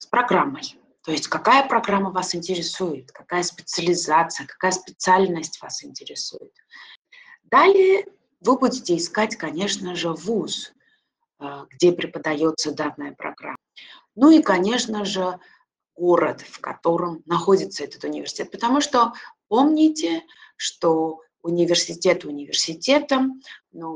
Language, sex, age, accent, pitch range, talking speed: Russian, female, 30-49, native, 165-265 Hz, 105 wpm